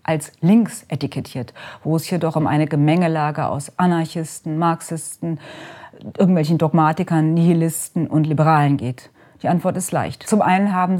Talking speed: 140 wpm